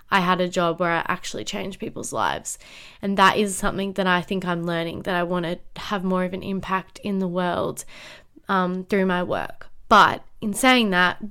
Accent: Australian